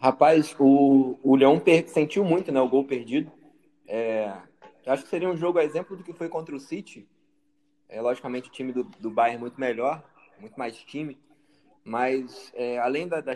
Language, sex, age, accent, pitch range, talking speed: Portuguese, male, 20-39, Brazilian, 135-175 Hz, 190 wpm